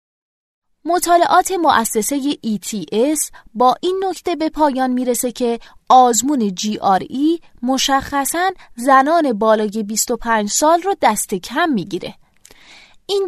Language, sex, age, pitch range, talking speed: Persian, female, 20-39, 215-295 Hz, 110 wpm